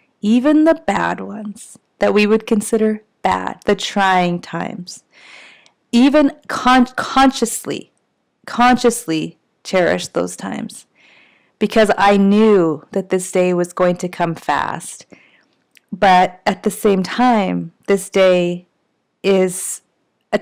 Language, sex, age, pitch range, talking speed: English, female, 30-49, 180-210 Hz, 110 wpm